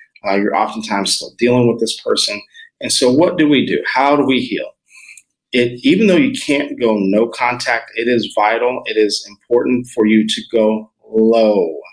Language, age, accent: English, 40-59, American